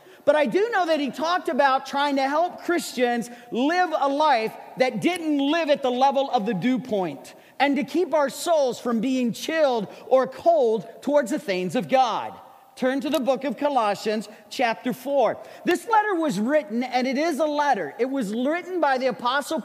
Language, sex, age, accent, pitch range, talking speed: English, male, 40-59, American, 230-300 Hz, 190 wpm